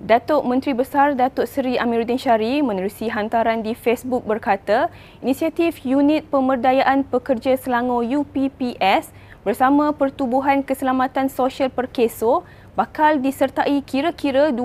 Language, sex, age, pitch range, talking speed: Malay, female, 20-39, 230-285 Hz, 105 wpm